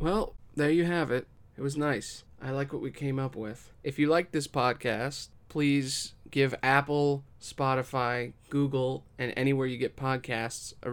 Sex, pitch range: male, 125-150 Hz